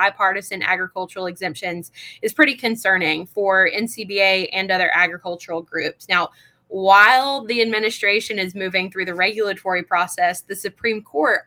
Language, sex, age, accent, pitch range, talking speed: English, female, 20-39, American, 185-235 Hz, 130 wpm